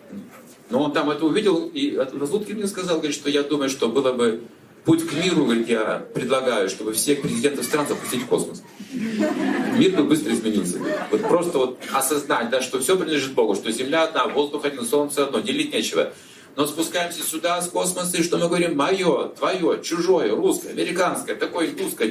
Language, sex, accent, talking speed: Russian, male, native, 180 wpm